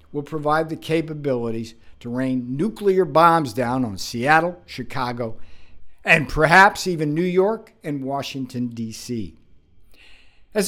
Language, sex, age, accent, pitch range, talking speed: English, male, 60-79, American, 110-160 Hz, 120 wpm